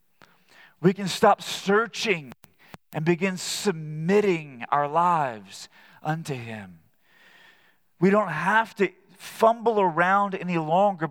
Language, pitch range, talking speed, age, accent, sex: English, 155-200 Hz, 105 wpm, 40-59, American, male